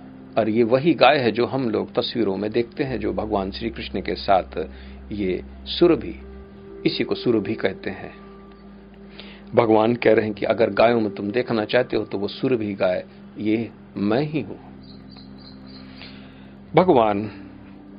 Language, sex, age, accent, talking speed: Hindi, male, 50-69, native, 155 wpm